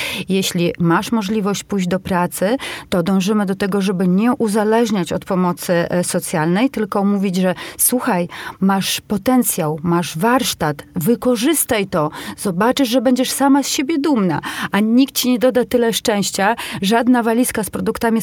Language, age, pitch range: Polish, 30-49, 190-230 Hz